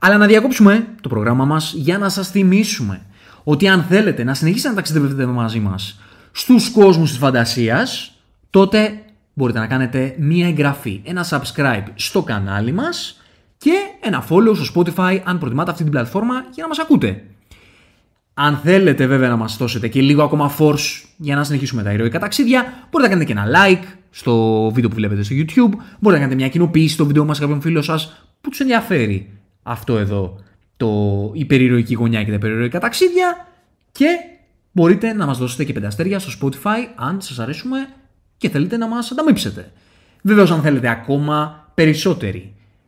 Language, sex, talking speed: Greek, male, 170 wpm